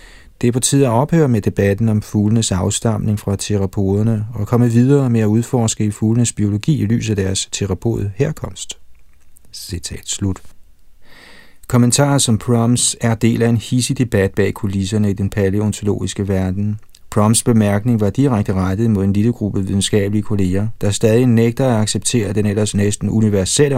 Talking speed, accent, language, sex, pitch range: 155 wpm, native, Danish, male, 95-115 Hz